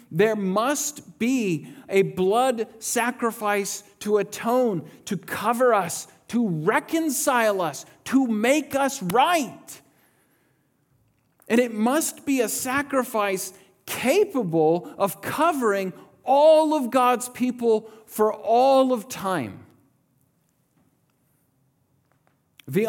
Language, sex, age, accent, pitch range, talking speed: English, male, 40-59, American, 170-245 Hz, 95 wpm